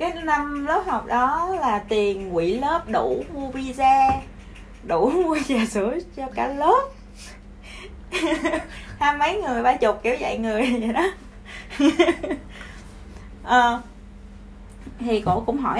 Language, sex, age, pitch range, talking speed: Vietnamese, female, 20-39, 215-285 Hz, 130 wpm